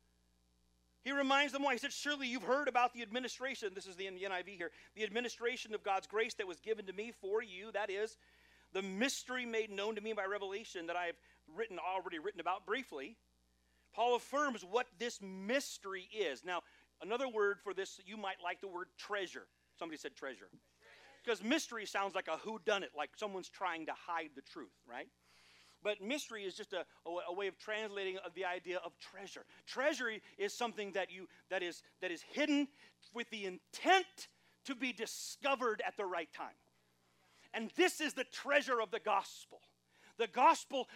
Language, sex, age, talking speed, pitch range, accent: English, male, 40-59, 185 wpm, 195-280 Hz, American